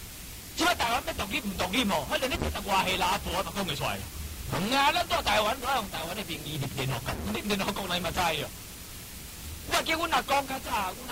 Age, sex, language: 50-69, male, Chinese